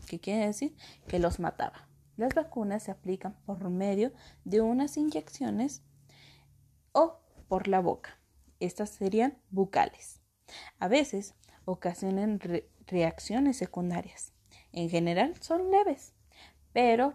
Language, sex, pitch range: Spanish, female, 185-250 Hz